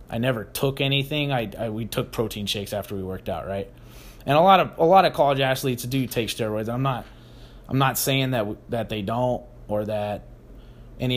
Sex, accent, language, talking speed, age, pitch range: male, American, English, 210 wpm, 20-39, 115-135 Hz